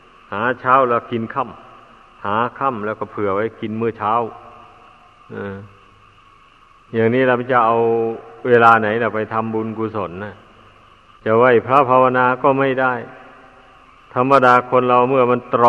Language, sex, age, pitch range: Thai, male, 60-79, 115-140 Hz